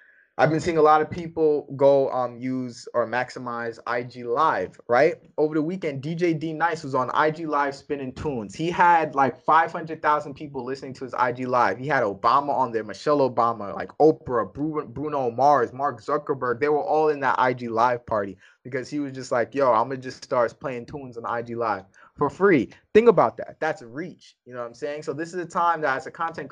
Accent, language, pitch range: American, English, 125-155 Hz